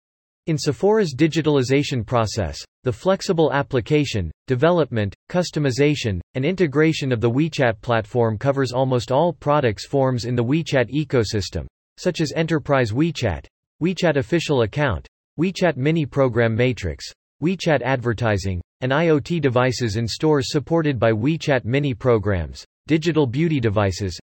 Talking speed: 125 wpm